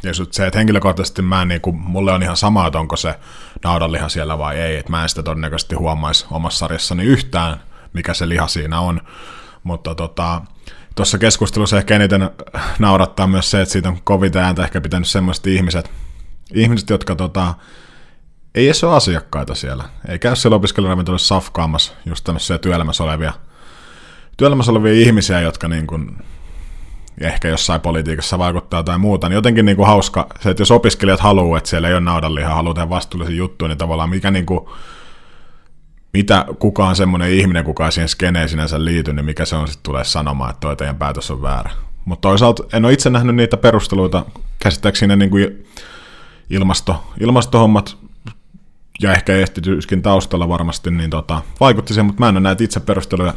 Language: Finnish